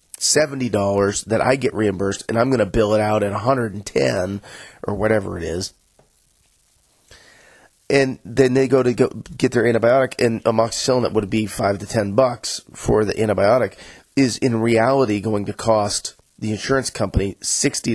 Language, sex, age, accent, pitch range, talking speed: English, male, 30-49, American, 100-125 Hz, 165 wpm